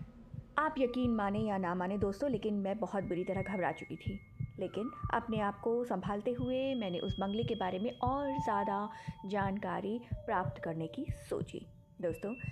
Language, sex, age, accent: Hindi, female, 20-39, native